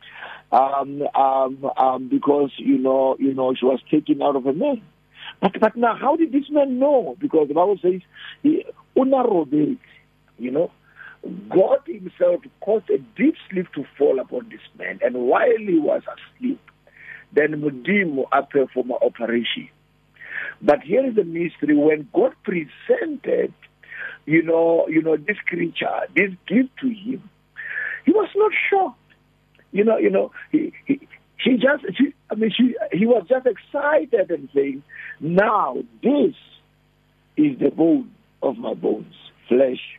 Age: 50-69